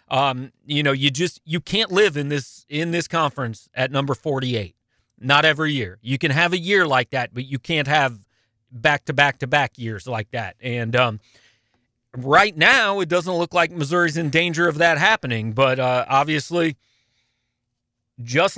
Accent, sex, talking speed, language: American, male, 180 wpm, English